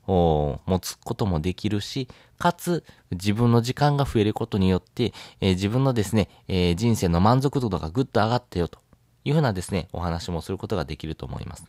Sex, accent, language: male, native, Japanese